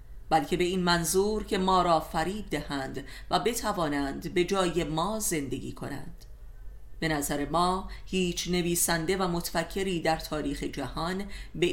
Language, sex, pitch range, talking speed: Persian, female, 155-195 Hz, 140 wpm